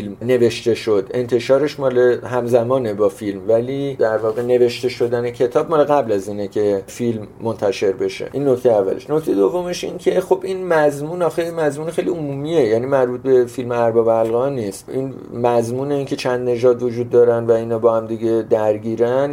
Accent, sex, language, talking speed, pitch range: Canadian, male, English, 175 wpm, 115-140 Hz